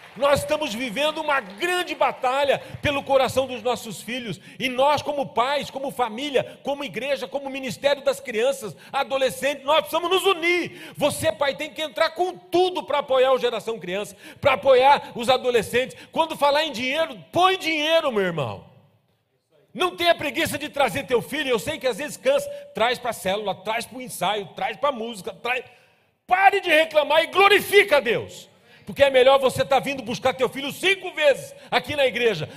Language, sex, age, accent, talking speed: Portuguese, male, 40-59, Brazilian, 180 wpm